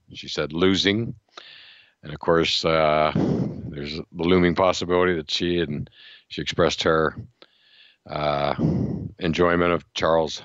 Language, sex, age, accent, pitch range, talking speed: English, male, 50-69, American, 80-90 Hz, 120 wpm